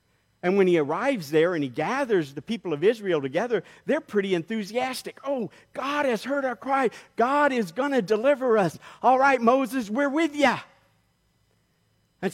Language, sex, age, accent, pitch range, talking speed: English, male, 50-69, American, 215-265 Hz, 170 wpm